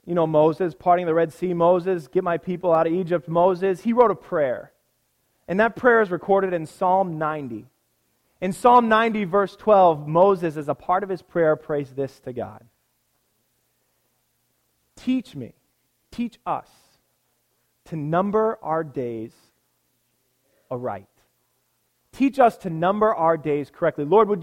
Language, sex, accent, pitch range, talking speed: English, male, American, 155-215 Hz, 150 wpm